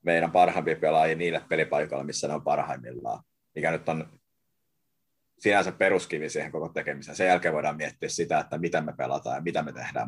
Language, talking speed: Finnish, 180 wpm